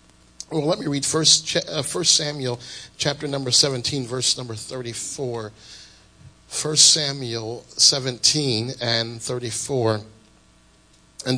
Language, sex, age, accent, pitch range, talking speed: English, male, 40-59, American, 120-150 Hz, 95 wpm